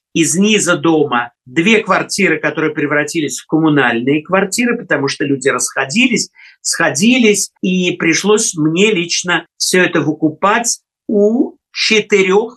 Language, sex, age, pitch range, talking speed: Russian, male, 50-69, 150-195 Hz, 115 wpm